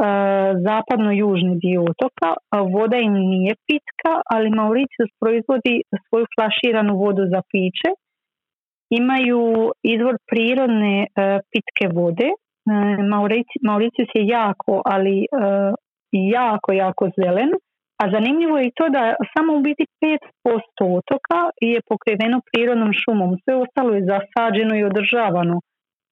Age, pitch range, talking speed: 30-49, 195-250 Hz, 110 wpm